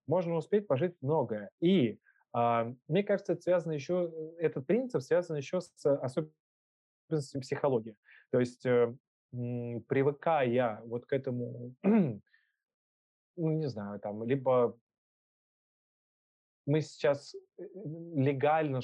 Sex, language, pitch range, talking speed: male, Russian, 120-150 Hz, 100 wpm